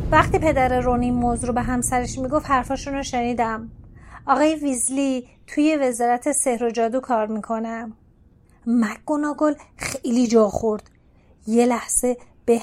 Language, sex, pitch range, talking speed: Persian, female, 240-310 Hz, 125 wpm